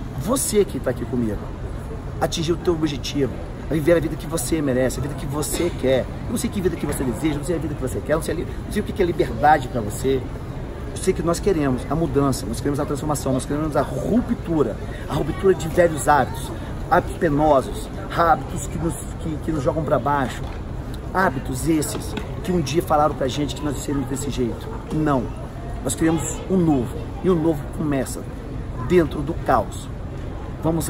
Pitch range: 120-155 Hz